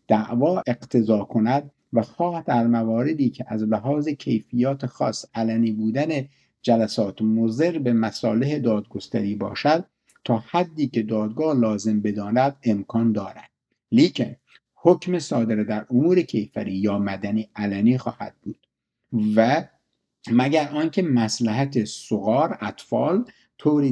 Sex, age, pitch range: male, 50-69, 110-145 Hz